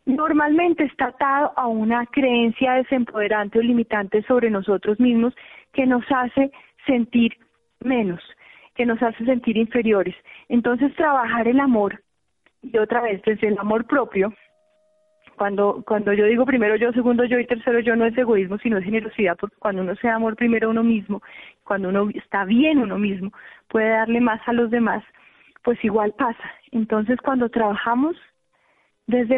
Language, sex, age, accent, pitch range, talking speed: Spanish, female, 30-49, Colombian, 215-260 Hz, 165 wpm